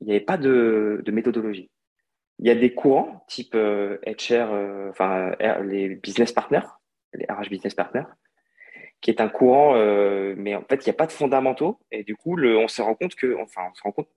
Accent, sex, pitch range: French, male, 105-140 Hz